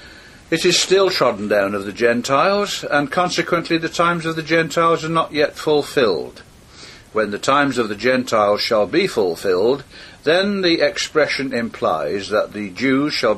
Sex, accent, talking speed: male, British, 160 wpm